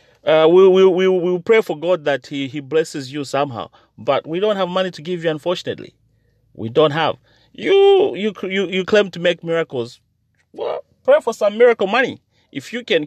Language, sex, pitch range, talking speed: English, male, 115-185 Hz, 200 wpm